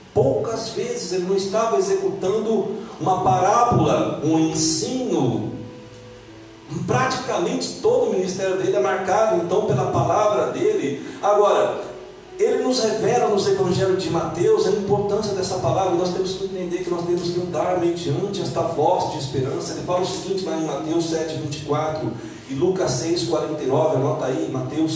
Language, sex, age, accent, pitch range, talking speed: Portuguese, male, 40-59, Brazilian, 150-195 Hz, 150 wpm